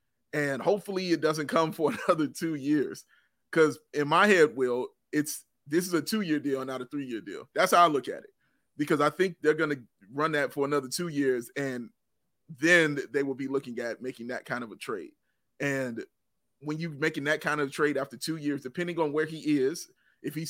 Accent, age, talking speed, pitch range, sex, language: American, 30-49, 215 wpm, 140-170 Hz, male, English